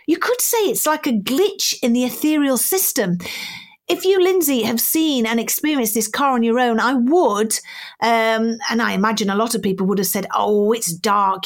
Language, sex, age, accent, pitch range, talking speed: English, female, 40-59, British, 200-310 Hz, 205 wpm